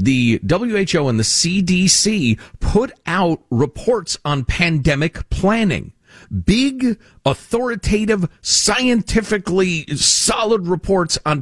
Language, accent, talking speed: English, American, 90 wpm